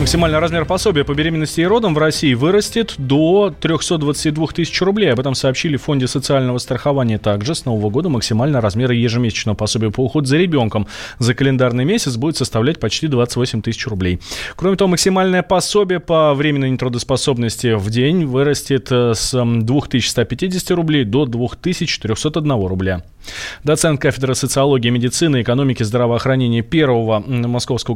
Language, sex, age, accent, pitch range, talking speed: Russian, male, 20-39, native, 130-215 Hz, 140 wpm